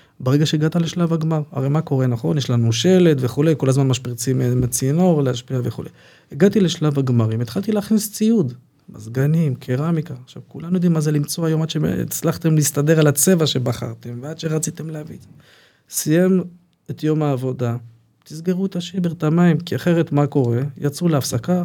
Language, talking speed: Hebrew, 165 wpm